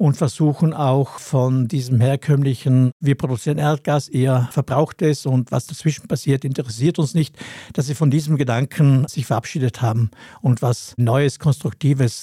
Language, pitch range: German, 130-155 Hz